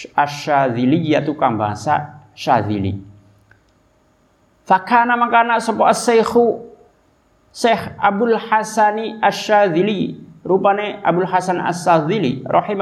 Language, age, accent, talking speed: Indonesian, 50-69, native, 100 wpm